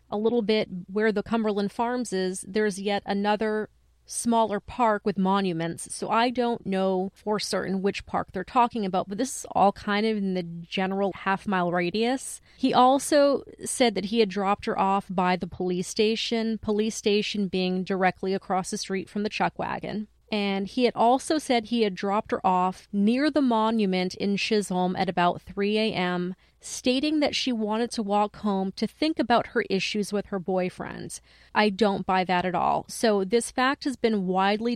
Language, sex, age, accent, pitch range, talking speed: English, female, 30-49, American, 190-235 Hz, 185 wpm